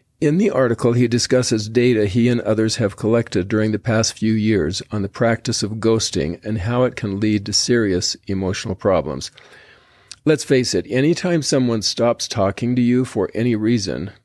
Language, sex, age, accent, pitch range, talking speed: English, male, 50-69, American, 105-125 Hz, 175 wpm